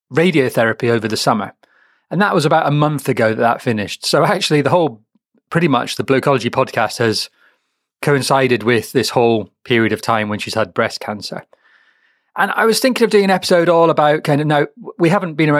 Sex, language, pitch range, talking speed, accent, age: male, English, 110-135 Hz, 200 wpm, British, 30-49